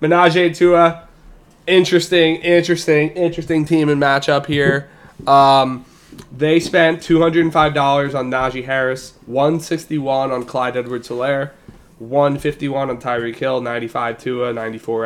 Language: English